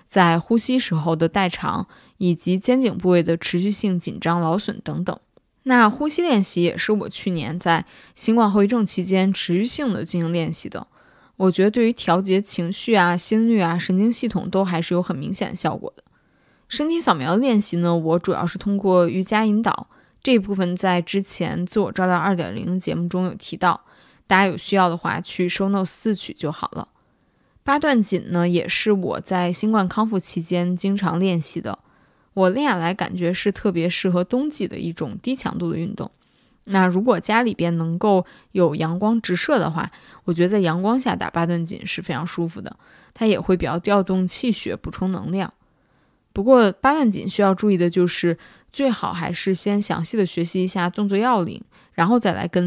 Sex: female